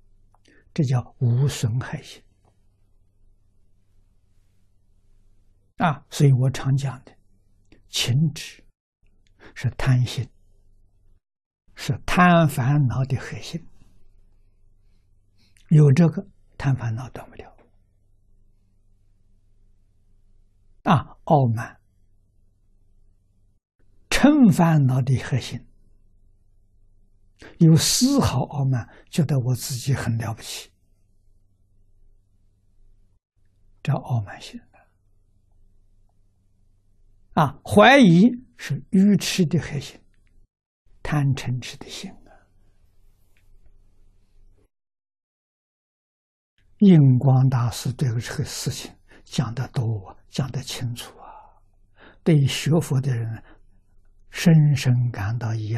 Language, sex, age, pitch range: Chinese, male, 60-79, 100-130 Hz